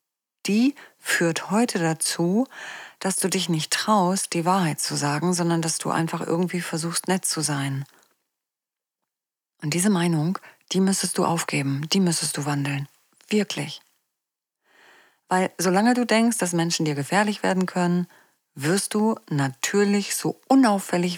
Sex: female